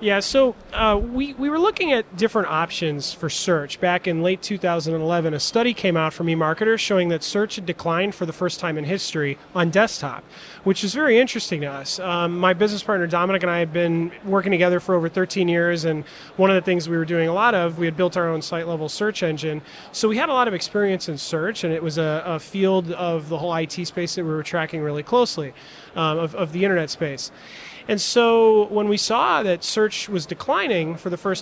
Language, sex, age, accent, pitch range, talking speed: English, male, 30-49, American, 165-205 Hz, 225 wpm